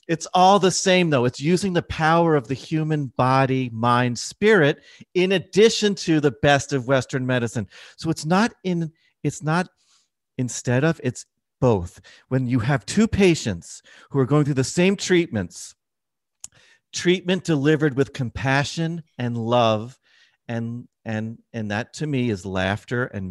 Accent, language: American, English